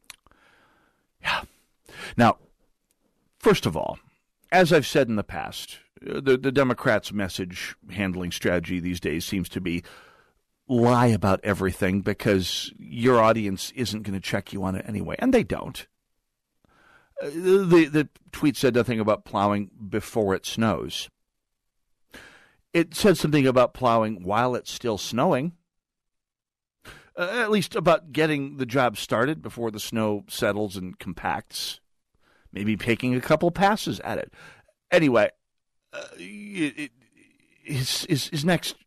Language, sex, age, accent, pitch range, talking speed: English, male, 50-69, American, 100-150 Hz, 135 wpm